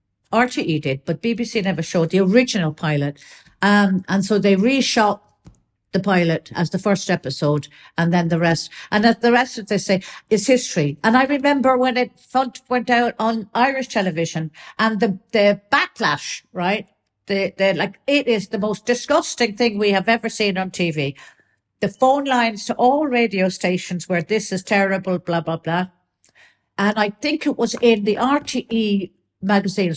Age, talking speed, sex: 50-69, 170 wpm, female